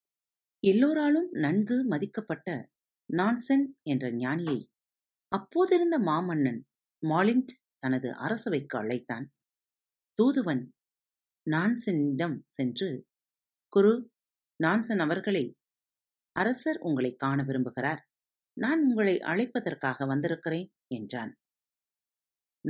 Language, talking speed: Tamil, 70 wpm